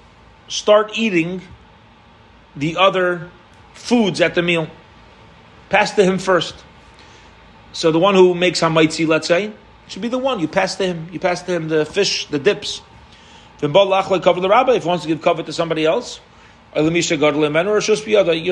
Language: English